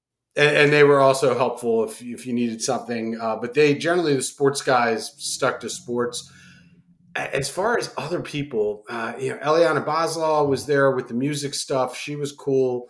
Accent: American